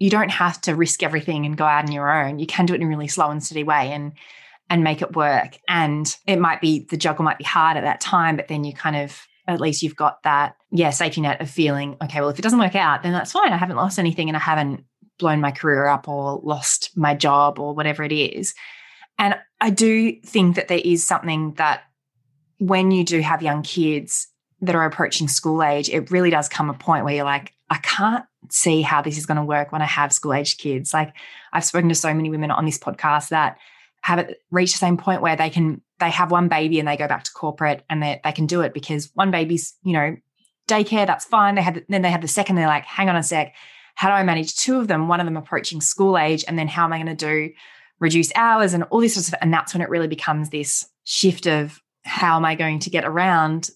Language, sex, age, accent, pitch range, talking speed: English, female, 20-39, Australian, 150-175 Hz, 255 wpm